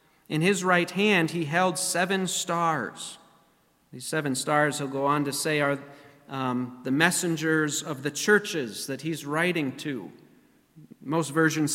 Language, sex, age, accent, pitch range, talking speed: English, male, 40-59, American, 145-175 Hz, 150 wpm